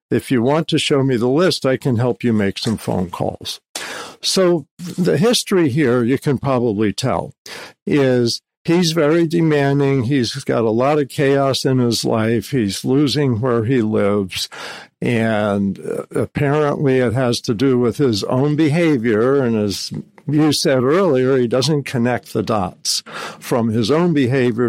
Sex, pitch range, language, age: male, 120-155 Hz, English, 60-79